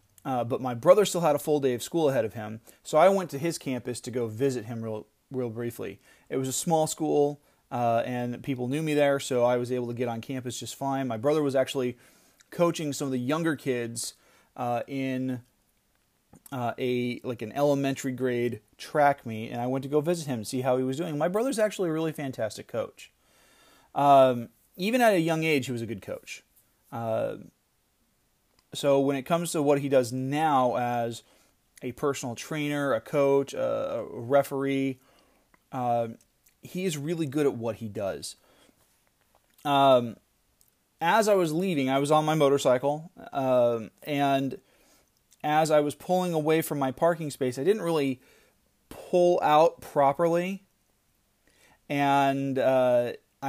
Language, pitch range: English, 125-155 Hz